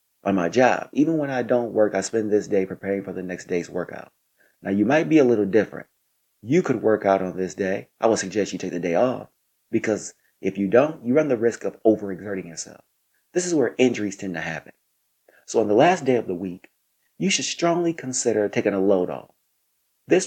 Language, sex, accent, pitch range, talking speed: English, male, American, 95-120 Hz, 220 wpm